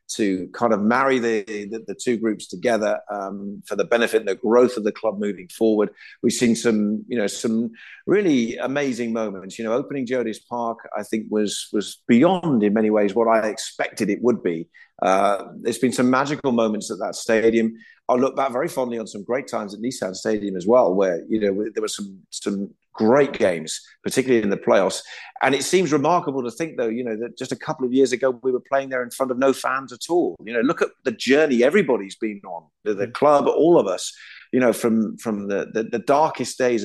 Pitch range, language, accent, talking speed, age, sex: 110-130 Hz, English, British, 225 wpm, 50-69, male